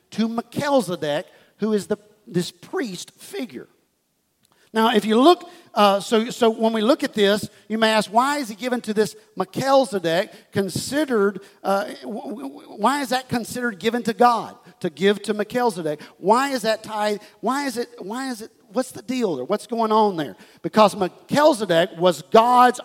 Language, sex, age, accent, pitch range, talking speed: English, male, 50-69, American, 195-245 Hz, 170 wpm